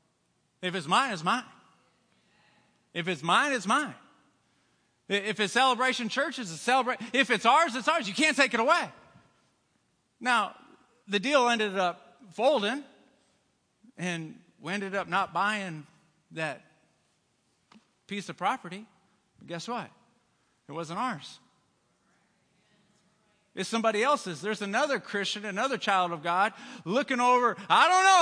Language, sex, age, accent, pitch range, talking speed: English, male, 40-59, American, 205-315 Hz, 135 wpm